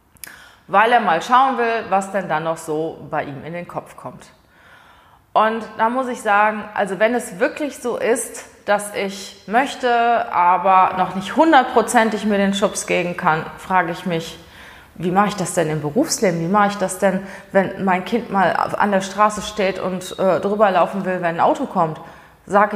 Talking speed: 185 wpm